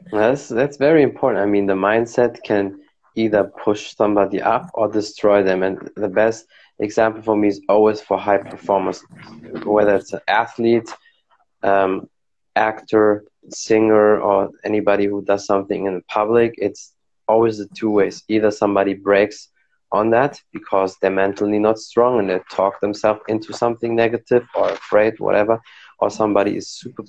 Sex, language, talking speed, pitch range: male, German, 160 wpm, 95-110 Hz